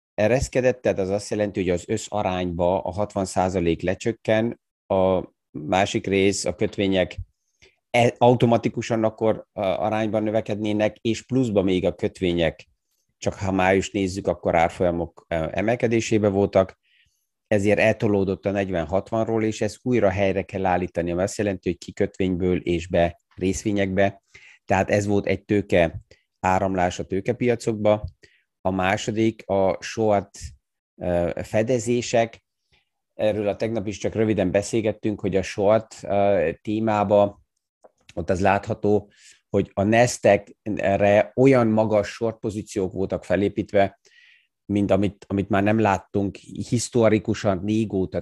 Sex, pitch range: male, 95-110 Hz